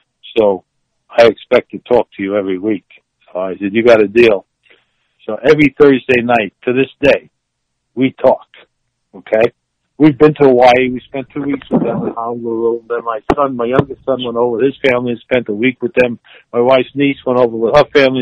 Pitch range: 115-145 Hz